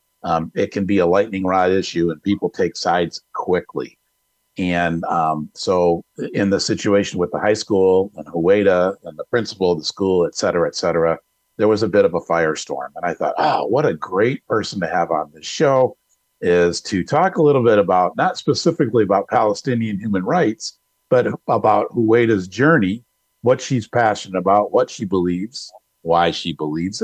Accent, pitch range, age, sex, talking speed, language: American, 85-110 Hz, 50-69, male, 180 wpm, English